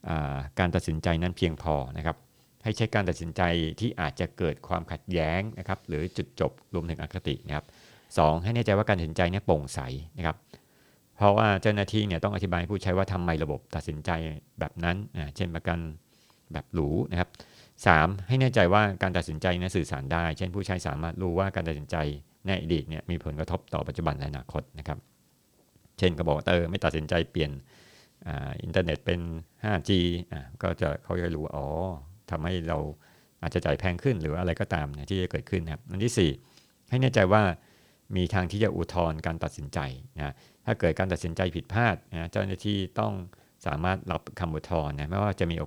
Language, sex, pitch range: Thai, male, 80-95 Hz